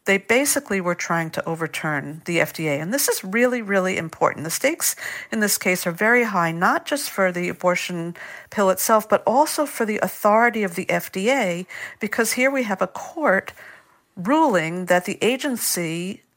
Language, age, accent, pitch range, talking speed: English, 50-69, American, 170-225 Hz, 170 wpm